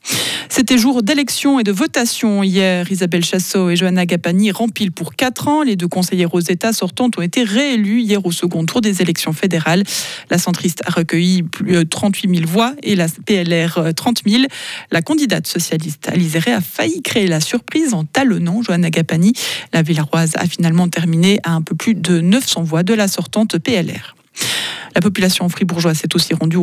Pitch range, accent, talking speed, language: 175-225 Hz, French, 185 wpm, French